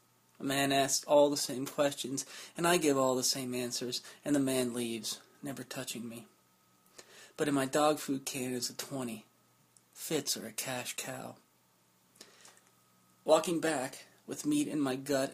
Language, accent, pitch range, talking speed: English, American, 125-150 Hz, 165 wpm